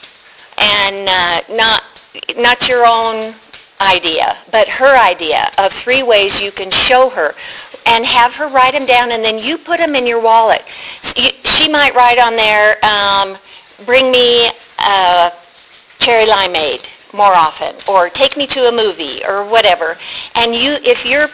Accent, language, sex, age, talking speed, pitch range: American, English, female, 50-69, 155 wpm, 200-260 Hz